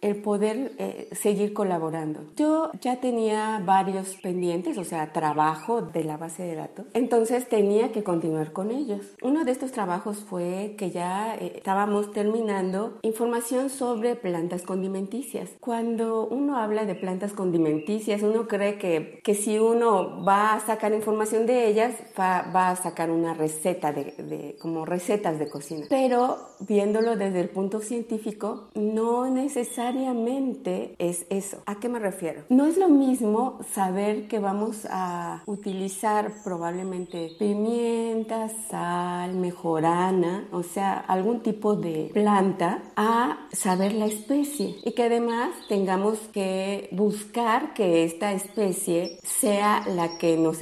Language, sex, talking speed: Spanish, female, 140 wpm